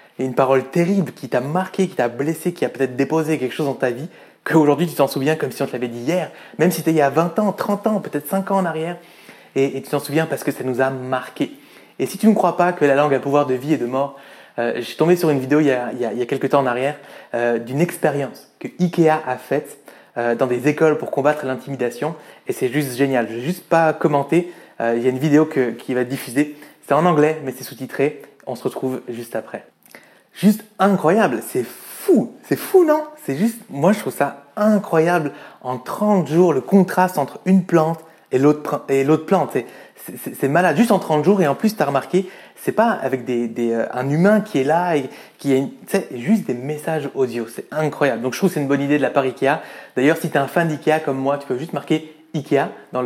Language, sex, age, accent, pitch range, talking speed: French, male, 20-39, French, 130-175 Hz, 255 wpm